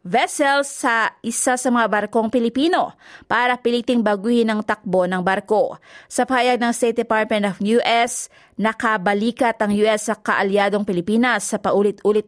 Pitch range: 205-250 Hz